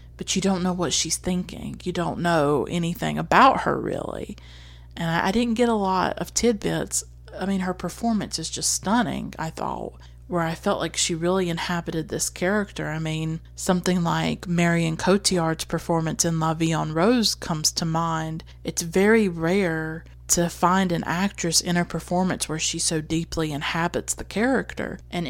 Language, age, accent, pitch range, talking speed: English, 30-49, American, 155-180 Hz, 175 wpm